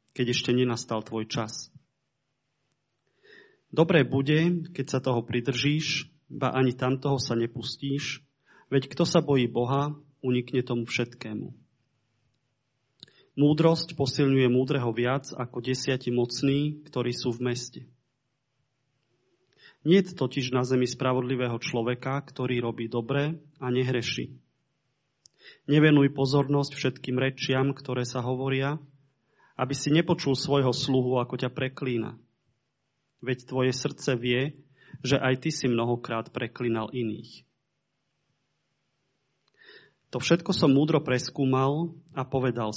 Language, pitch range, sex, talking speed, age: Slovak, 120-140 Hz, male, 110 wpm, 30-49